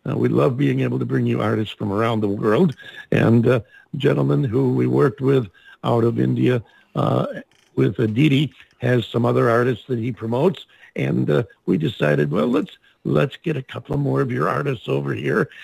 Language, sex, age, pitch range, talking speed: English, male, 60-79, 110-145 Hz, 190 wpm